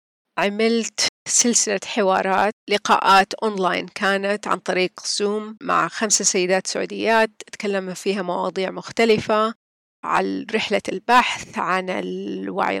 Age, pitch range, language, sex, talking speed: 40-59, 190-225 Hz, Arabic, female, 105 wpm